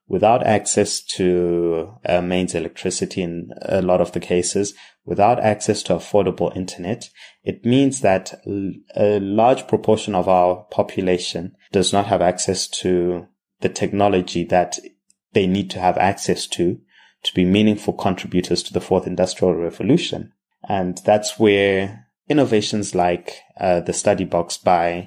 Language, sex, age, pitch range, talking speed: English, male, 20-39, 90-105 Hz, 140 wpm